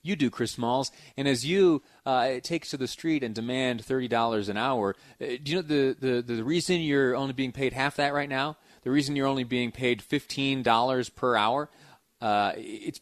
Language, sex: English, male